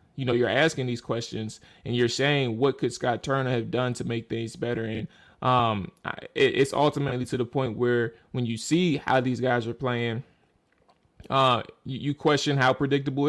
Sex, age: male, 20-39